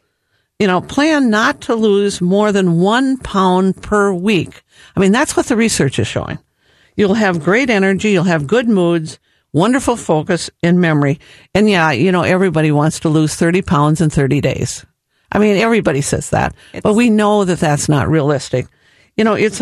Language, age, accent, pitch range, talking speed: English, 50-69, American, 160-210 Hz, 185 wpm